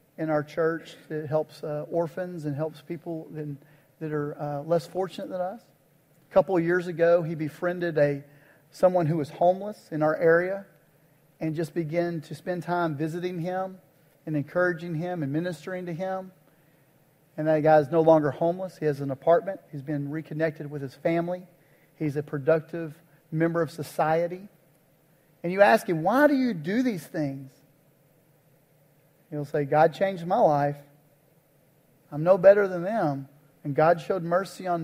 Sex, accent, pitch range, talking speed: male, American, 150-185 Hz, 165 wpm